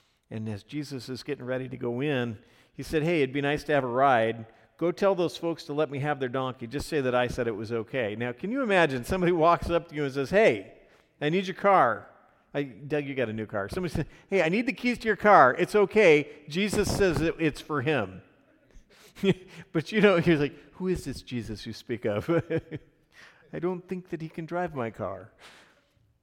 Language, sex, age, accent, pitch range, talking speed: English, male, 40-59, American, 135-190 Hz, 220 wpm